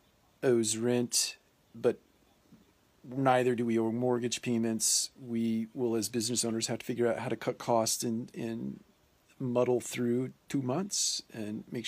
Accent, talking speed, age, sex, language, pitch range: American, 150 wpm, 40-59, male, English, 110-120 Hz